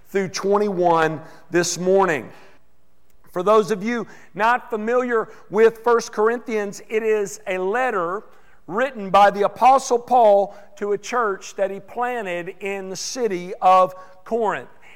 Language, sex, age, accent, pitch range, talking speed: English, male, 50-69, American, 175-225 Hz, 130 wpm